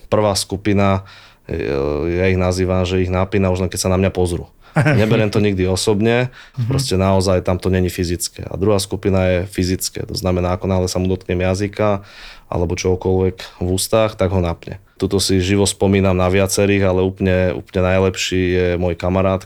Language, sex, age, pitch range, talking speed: Slovak, male, 20-39, 90-100 Hz, 180 wpm